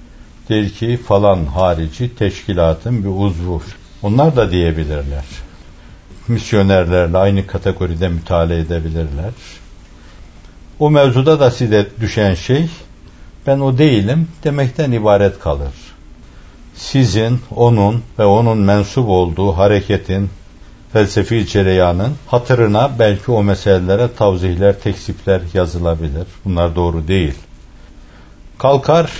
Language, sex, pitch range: Turkish, male, 85-120 Hz